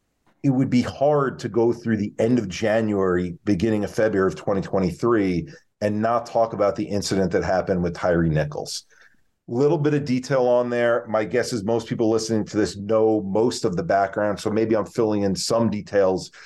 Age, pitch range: 40-59, 105-125 Hz